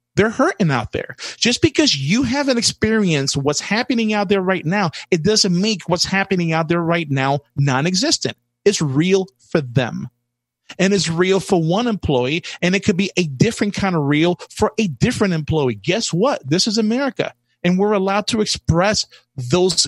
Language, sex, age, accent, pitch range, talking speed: English, male, 30-49, American, 145-200 Hz, 180 wpm